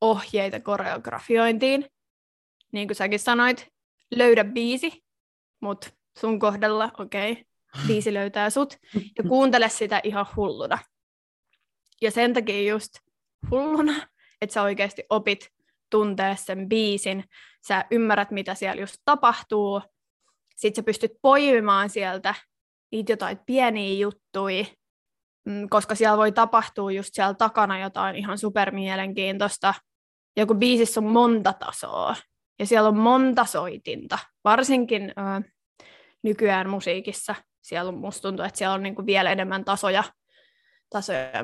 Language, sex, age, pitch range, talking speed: Finnish, female, 20-39, 195-235 Hz, 120 wpm